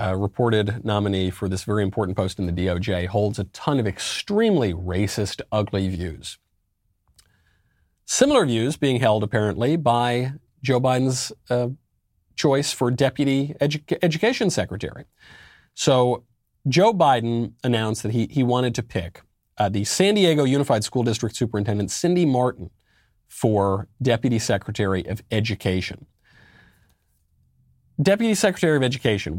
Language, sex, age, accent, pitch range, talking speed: English, male, 40-59, American, 100-135 Hz, 125 wpm